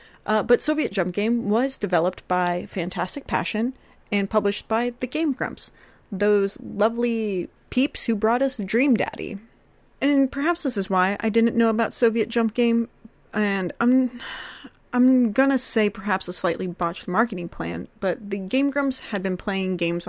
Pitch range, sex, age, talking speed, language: 180-230 Hz, female, 30-49, 165 wpm, English